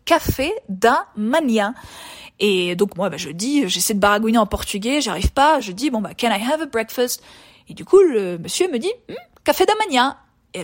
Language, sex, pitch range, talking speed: French, female, 205-285 Hz, 205 wpm